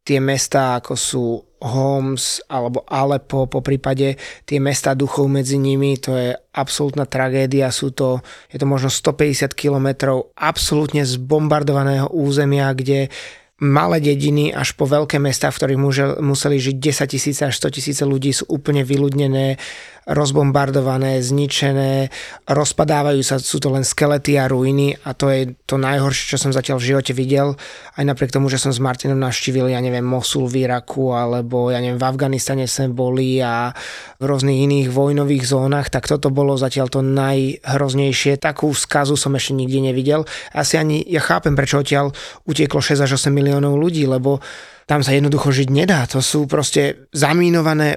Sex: male